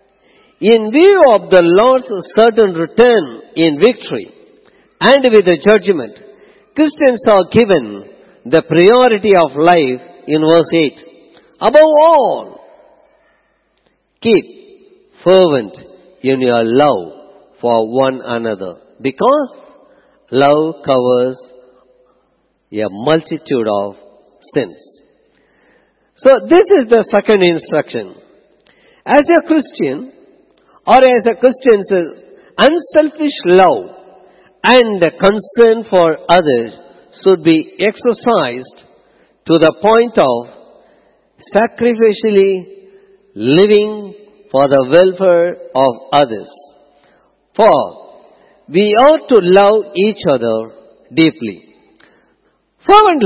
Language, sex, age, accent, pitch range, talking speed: English, male, 50-69, Indian, 160-265 Hz, 95 wpm